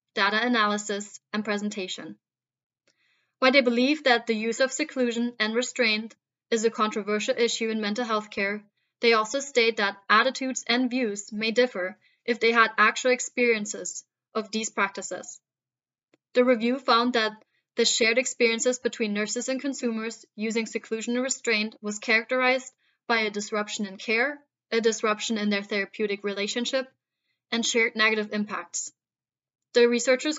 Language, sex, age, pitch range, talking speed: English, female, 20-39, 210-250 Hz, 145 wpm